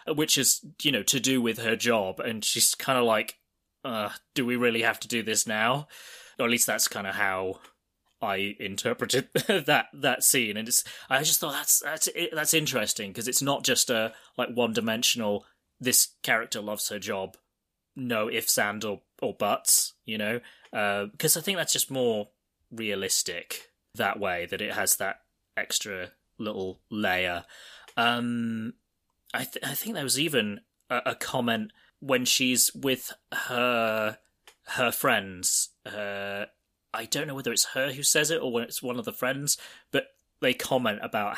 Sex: male